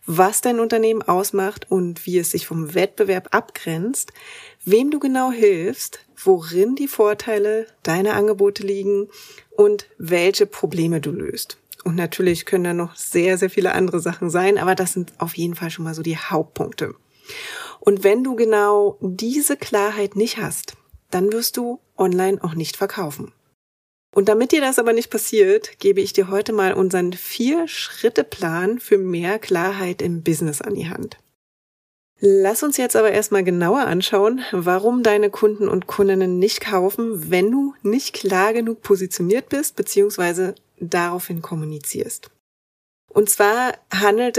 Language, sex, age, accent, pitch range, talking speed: German, female, 30-49, German, 180-230 Hz, 155 wpm